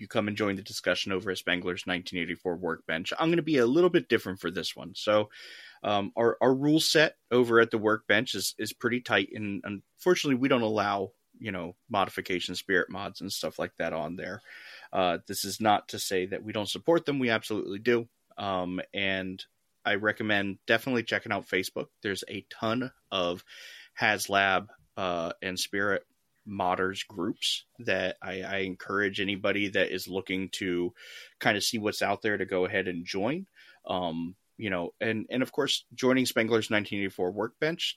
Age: 30-49